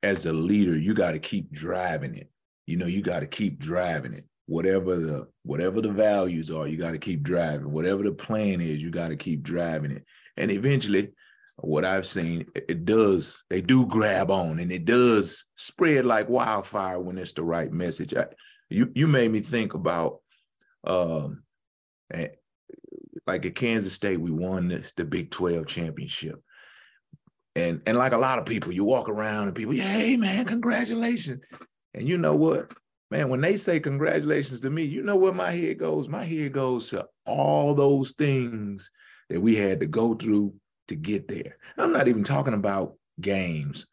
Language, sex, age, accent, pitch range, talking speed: English, male, 30-49, American, 85-135 Hz, 185 wpm